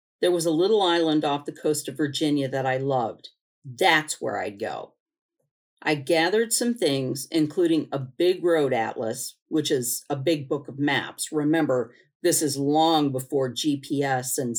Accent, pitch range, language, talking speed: American, 145-185 Hz, English, 165 wpm